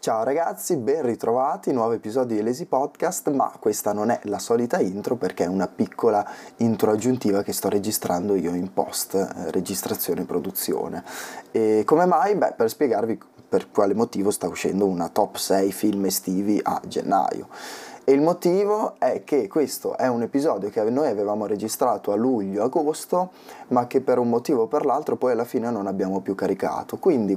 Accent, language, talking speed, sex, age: native, Italian, 175 wpm, male, 20-39